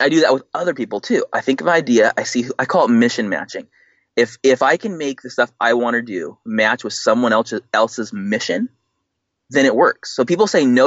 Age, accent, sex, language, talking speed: 20-39, American, male, English, 245 wpm